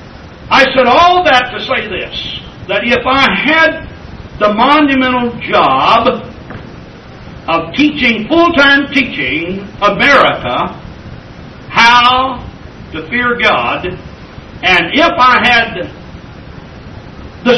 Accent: American